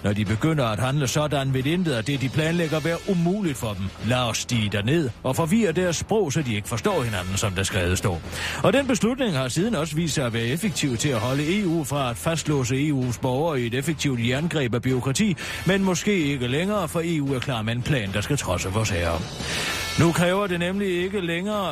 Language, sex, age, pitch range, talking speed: Danish, male, 40-59, 115-160 Hz, 225 wpm